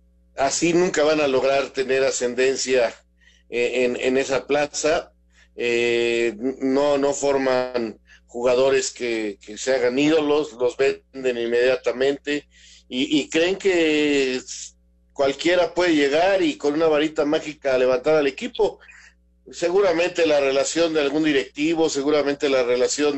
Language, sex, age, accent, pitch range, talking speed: Spanish, male, 50-69, Mexican, 125-155 Hz, 125 wpm